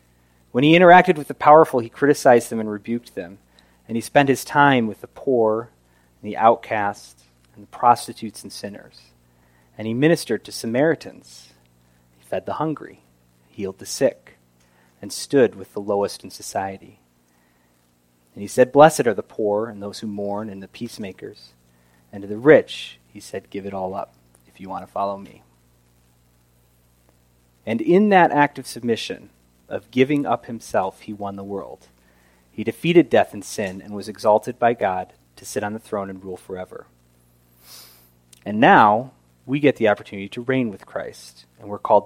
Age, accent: 30-49, American